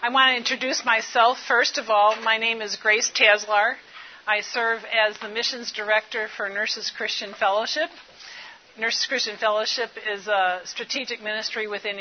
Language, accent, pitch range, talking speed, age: English, American, 195-225 Hz, 155 wpm, 50-69